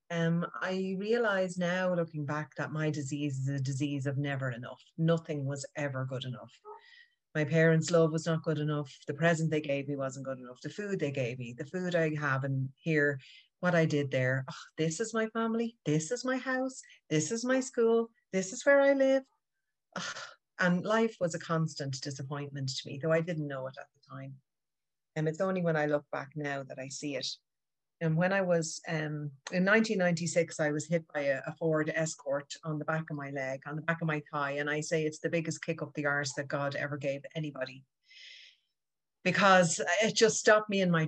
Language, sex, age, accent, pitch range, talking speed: English, female, 30-49, Irish, 145-170 Hz, 215 wpm